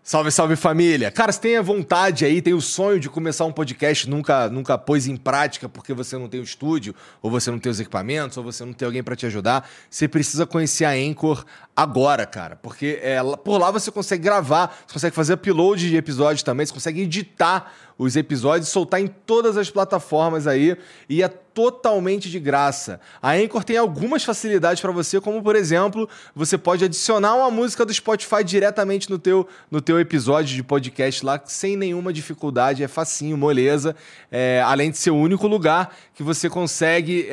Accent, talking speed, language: Brazilian, 190 wpm, Portuguese